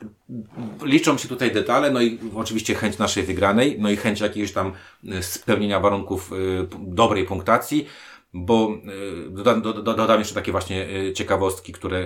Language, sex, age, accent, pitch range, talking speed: Polish, male, 30-49, native, 95-110 Hz, 145 wpm